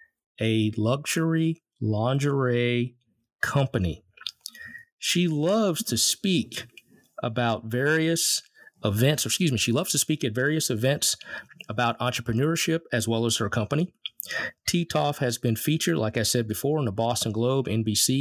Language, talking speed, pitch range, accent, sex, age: English, 135 wpm, 115-150 Hz, American, male, 40-59